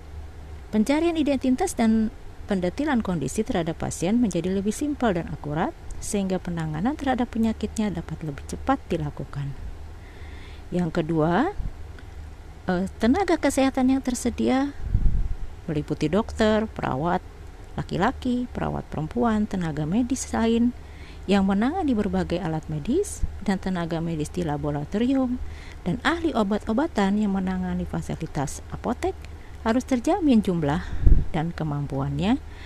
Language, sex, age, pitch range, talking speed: Indonesian, female, 50-69, 155-245 Hz, 105 wpm